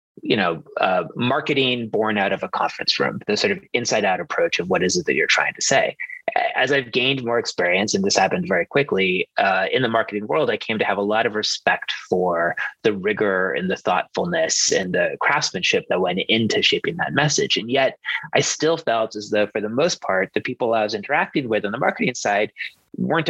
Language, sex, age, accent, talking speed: English, male, 30-49, American, 220 wpm